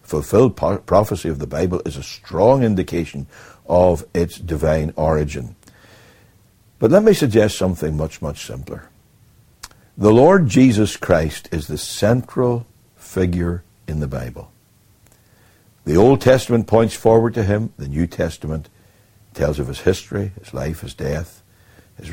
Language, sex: English, male